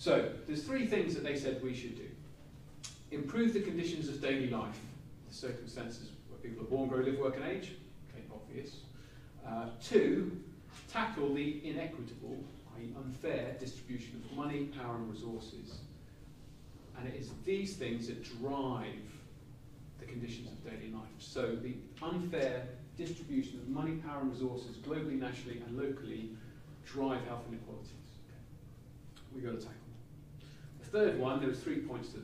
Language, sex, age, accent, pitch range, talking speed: English, male, 40-59, British, 120-145 Hz, 150 wpm